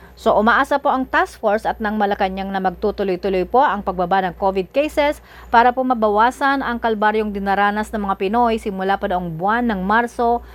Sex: female